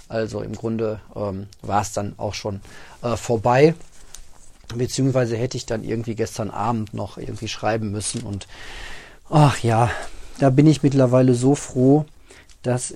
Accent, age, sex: German, 40-59, male